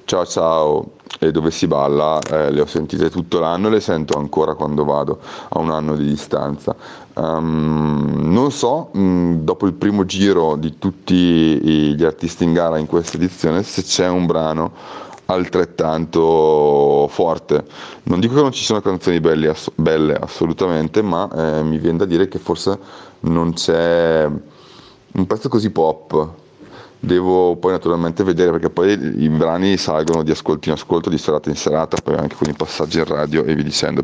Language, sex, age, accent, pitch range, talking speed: Italian, male, 30-49, native, 80-95 Hz, 175 wpm